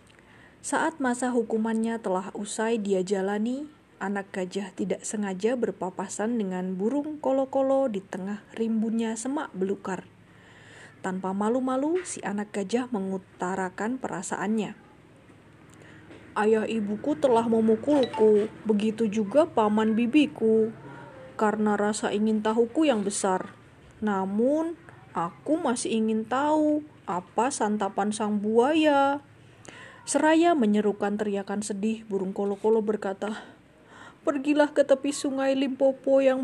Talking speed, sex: 105 wpm, female